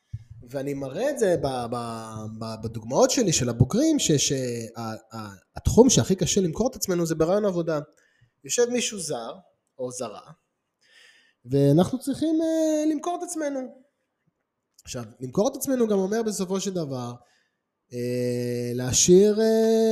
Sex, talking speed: male, 110 wpm